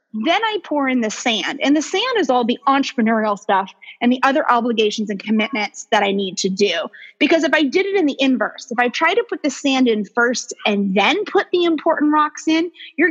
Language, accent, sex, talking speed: English, American, female, 230 wpm